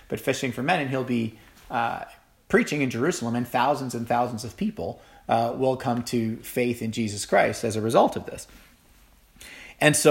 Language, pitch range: English, 110-135 Hz